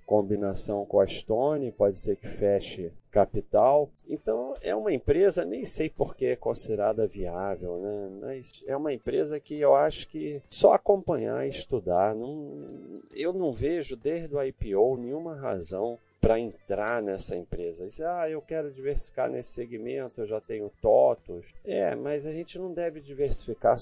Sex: male